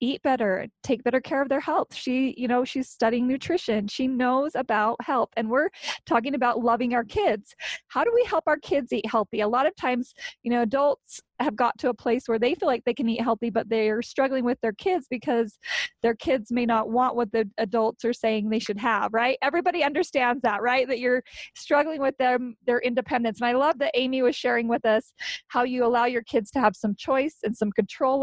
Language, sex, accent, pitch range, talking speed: English, female, American, 230-280 Hz, 225 wpm